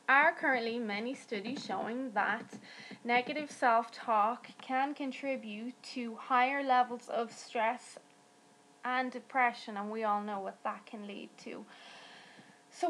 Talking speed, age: 125 wpm, 20-39